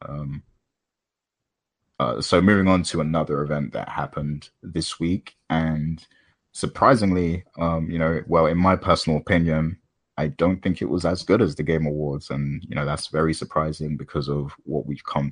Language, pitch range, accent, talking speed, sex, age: English, 70-80 Hz, British, 170 wpm, male, 20-39